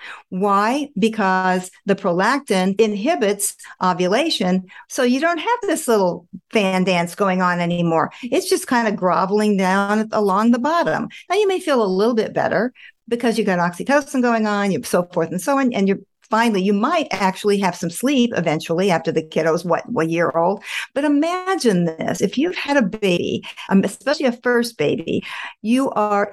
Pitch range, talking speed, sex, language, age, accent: 185-245 Hz, 175 wpm, female, English, 50-69, American